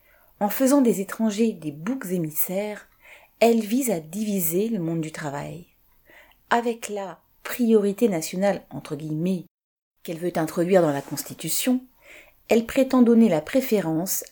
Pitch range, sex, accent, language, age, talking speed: 155-215 Hz, female, French, French, 30-49, 145 wpm